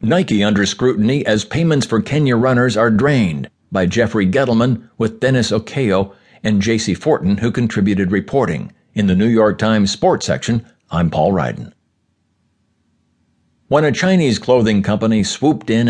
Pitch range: 100-125 Hz